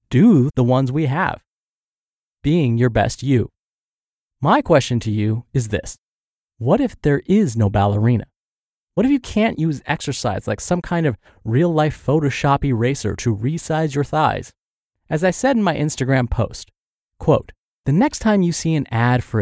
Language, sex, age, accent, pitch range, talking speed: English, male, 30-49, American, 115-160 Hz, 165 wpm